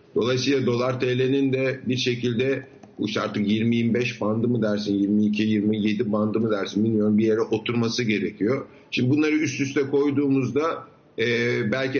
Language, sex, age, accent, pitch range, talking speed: Turkish, male, 50-69, native, 110-135 Hz, 140 wpm